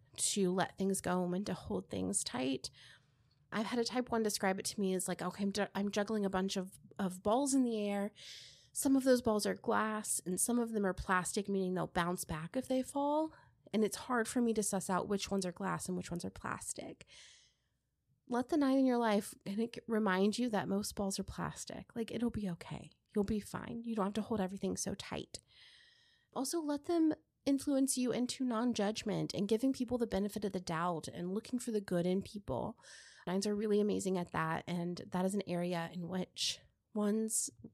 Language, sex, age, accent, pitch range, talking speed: English, female, 30-49, American, 180-235 Hz, 210 wpm